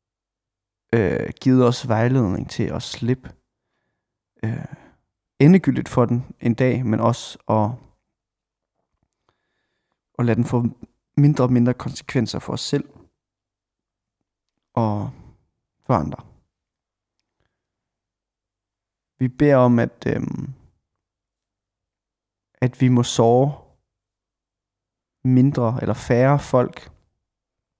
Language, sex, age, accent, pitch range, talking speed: Danish, male, 30-49, native, 110-125 Hz, 85 wpm